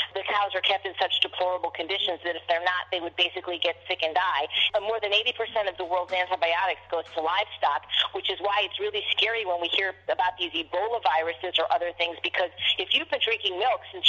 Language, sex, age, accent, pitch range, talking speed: English, female, 40-59, American, 180-240 Hz, 225 wpm